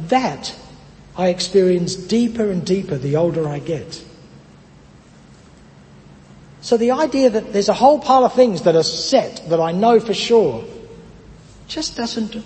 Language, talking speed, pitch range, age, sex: English, 145 wpm, 160-225 Hz, 60-79, male